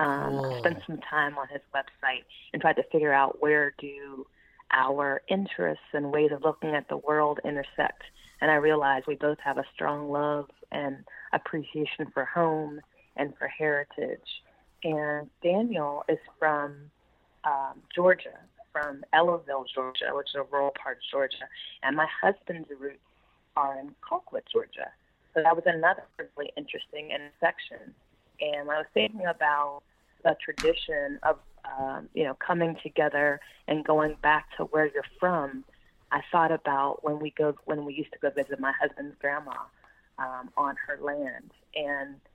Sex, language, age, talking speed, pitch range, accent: female, English, 30-49, 155 wpm, 140-160 Hz, American